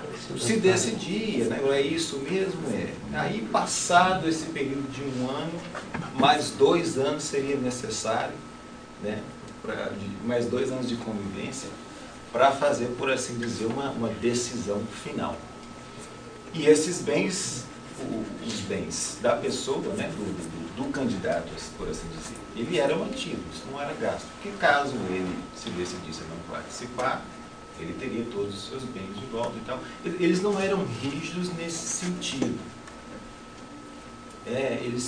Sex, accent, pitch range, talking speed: male, Brazilian, 120-185 Hz, 140 wpm